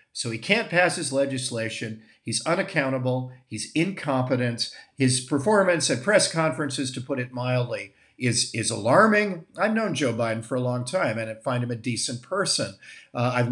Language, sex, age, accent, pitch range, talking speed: English, male, 50-69, American, 115-150 Hz, 175 wpm